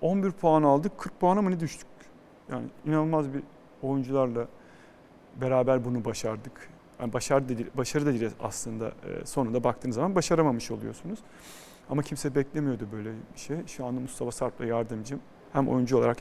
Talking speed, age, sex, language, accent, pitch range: 165 wpm, 40-59, male, Turkish, native, 125-155 Hz